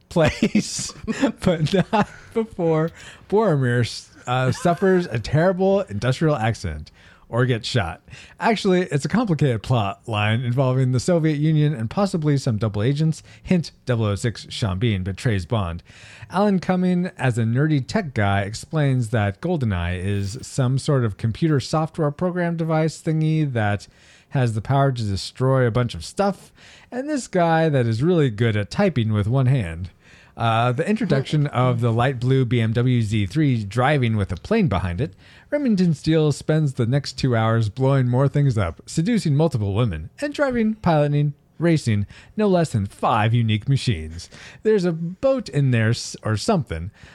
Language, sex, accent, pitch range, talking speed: English, male, American, 110-165 Hz, 155 wpm